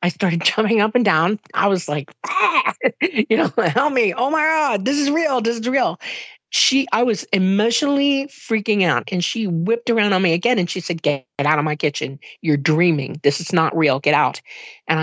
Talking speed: 210 wpm